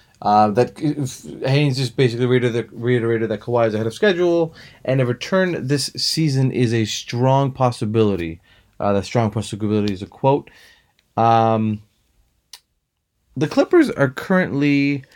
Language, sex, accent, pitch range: English, male, American, 105-140 Hz